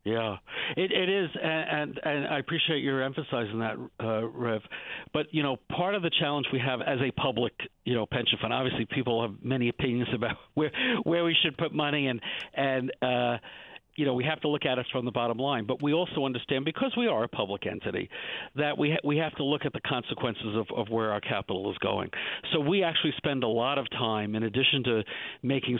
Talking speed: 225 wpm